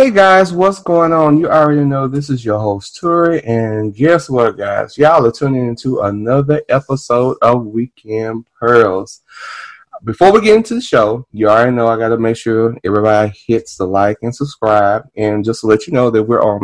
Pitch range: 110-165 Hz